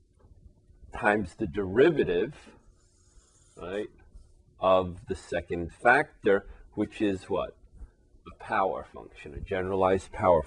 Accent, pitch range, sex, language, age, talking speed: American, 90-105 Hz, male, English, 40-59, 95 wpm